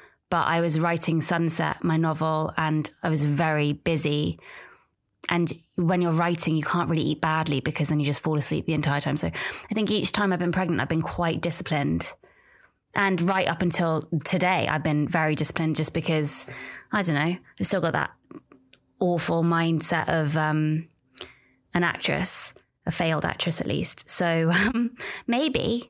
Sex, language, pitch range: female, English, 160-220 Hz